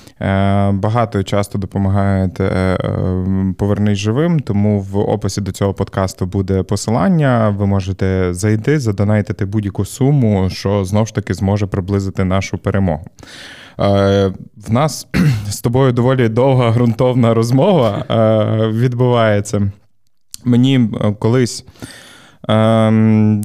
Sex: male